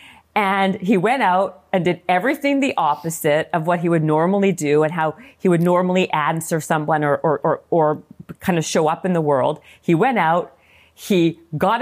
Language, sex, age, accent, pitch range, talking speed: English, female, 50-69, American, 165-210 Hz, 195 wpm